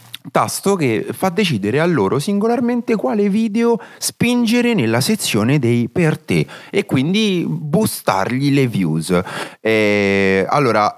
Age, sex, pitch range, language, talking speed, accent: 30-49, male, 95-145 Hz, Italian, 115 wpm, native